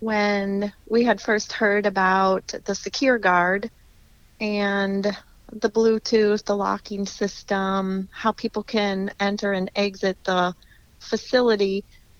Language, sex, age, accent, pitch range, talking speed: English, female, 30-49, American, 195-220 Hz, 115 wpm